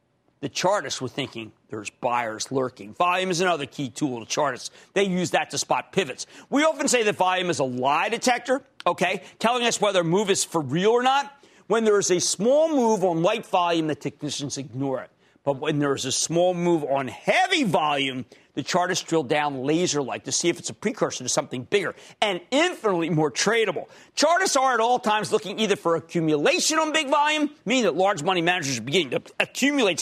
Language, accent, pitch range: English, American, 145-235 Hz